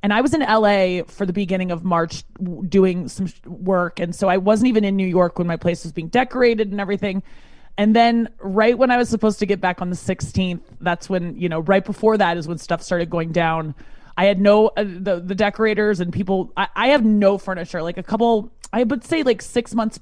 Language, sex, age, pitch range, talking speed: English, male, 20-39, 180-225 Hz, 235 wpm